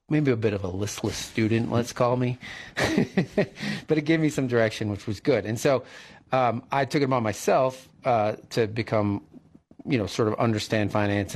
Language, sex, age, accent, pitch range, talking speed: English, male, 40-59, American, 100-125 Hz, 190 wpm